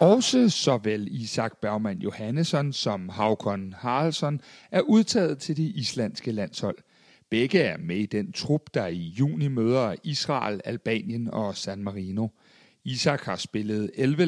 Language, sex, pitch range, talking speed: Danish, male, 115-175 Hz, 140 wpm